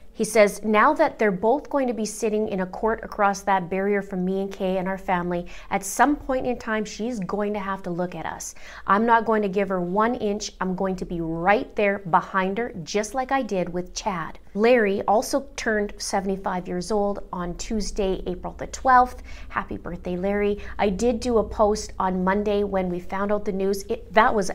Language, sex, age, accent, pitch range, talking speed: English, female, 30-49, American, 195-230 Hz, 215 wpm